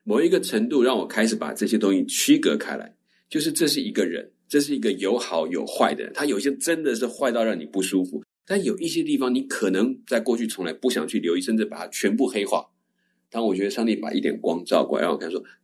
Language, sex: Chinese, male